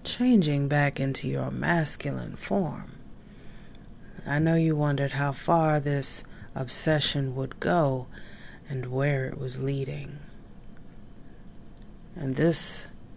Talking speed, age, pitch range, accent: 105 wpm, 30-49, 135-155 Hz, American